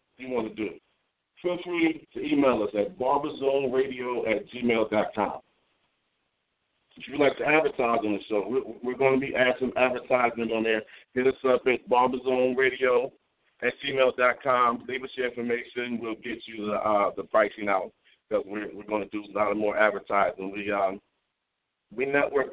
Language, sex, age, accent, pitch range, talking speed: English, male, 40-59, American, 105-140 Hz, 175 wpm